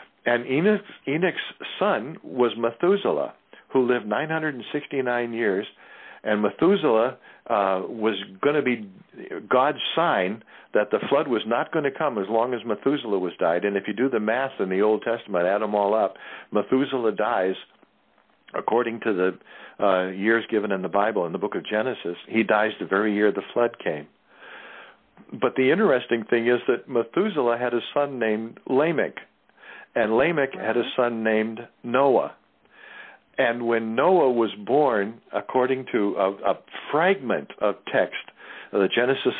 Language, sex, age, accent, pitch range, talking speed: English, male, 60-79, American, 105-130 Hz, 155 wpm